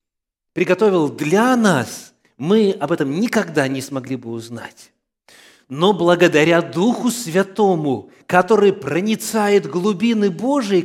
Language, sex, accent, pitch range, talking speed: Russian, male, native, 135-205 Hz, 105 wpm